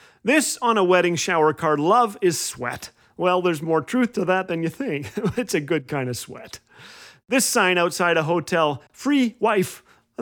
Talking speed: 190 wpm